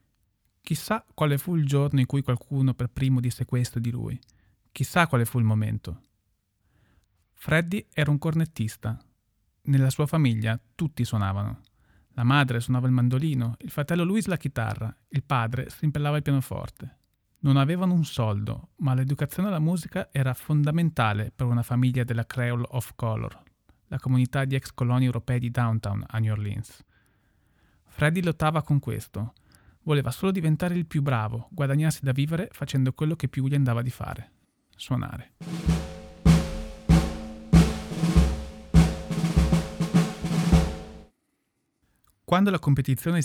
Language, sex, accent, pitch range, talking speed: Italian, male, native, 110-145 Hz, 135 wpm